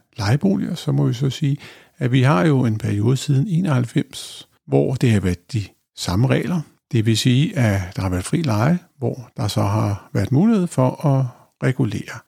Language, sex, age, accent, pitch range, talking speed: Danish, male, 60-79, native, 115-150 Hz, 190 wpm